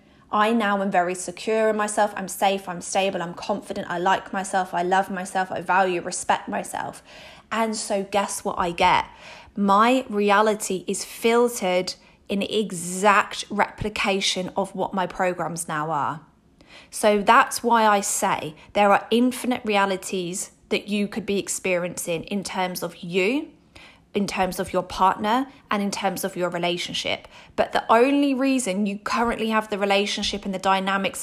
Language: English